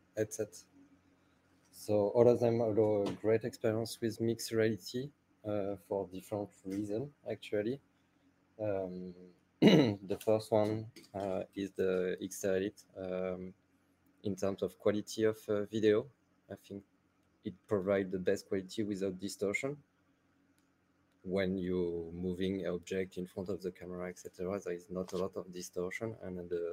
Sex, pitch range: male, 90-100 Hz